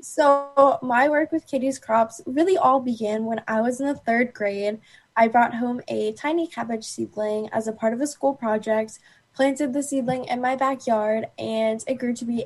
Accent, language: American, English